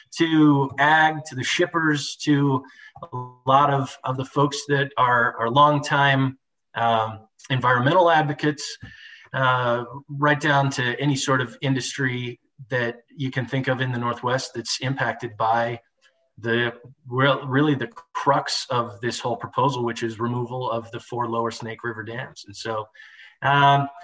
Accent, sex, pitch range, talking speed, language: American, male, 125-165 Hz, 150 wpm, English